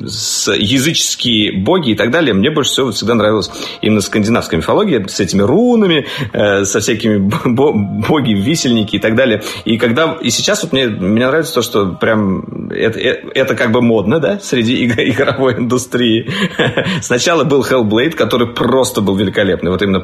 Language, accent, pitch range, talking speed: Russian, native, 100-130 Hz, 165 wpm